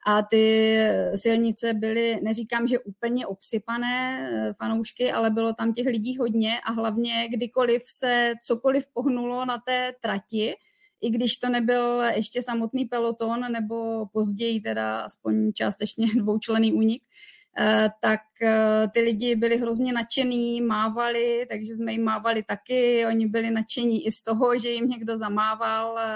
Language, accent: Czech, native